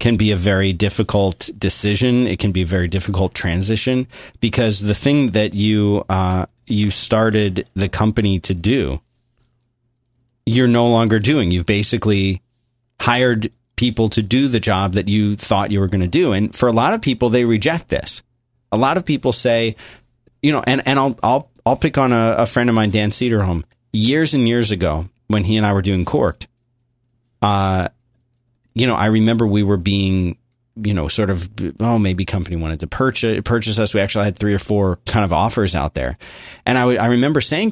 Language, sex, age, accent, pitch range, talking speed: English, male, 30-49, American, 100-120 Hz, 195 wpm